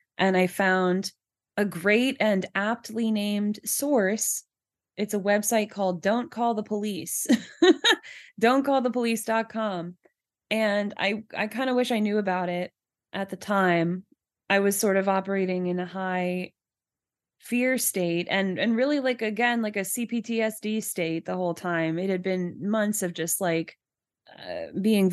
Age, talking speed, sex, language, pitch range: 20-39, 150 wpm, female, English, 175-210 Hz